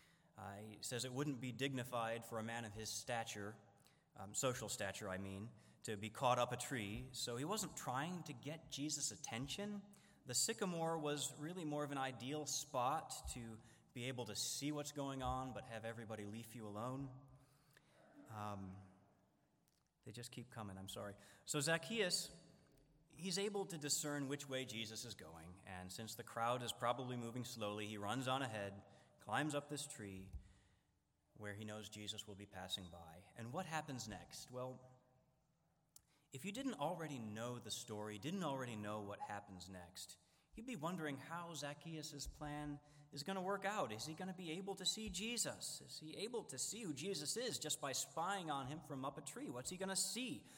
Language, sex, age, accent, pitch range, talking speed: English, male, 30-49, American, 110-155 Hz, 185 wpm